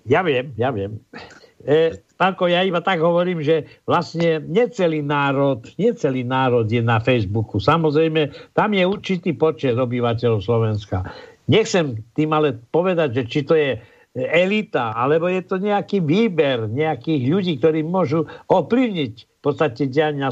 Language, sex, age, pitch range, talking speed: Slovak, male, 60-79, 135-195 Hz, 140 wpm